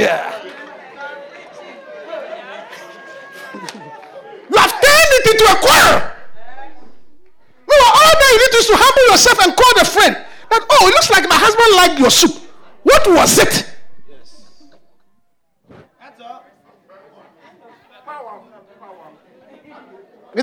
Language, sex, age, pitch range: English, male, 50-69, 255-375 Hz